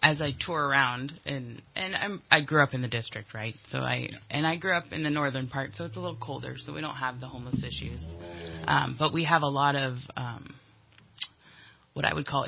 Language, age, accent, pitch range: English, 20-39, American, 125-140 Hz